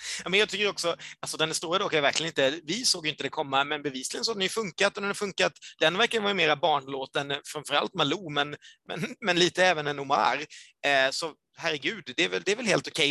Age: 30-49